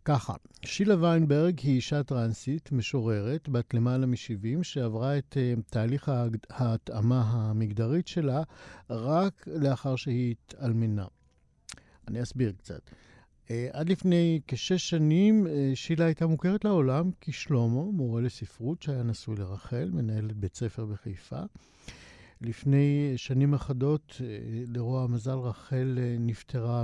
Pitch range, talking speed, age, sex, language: 115-145 Hz, 105 wpm, 50-69, male, Hebrew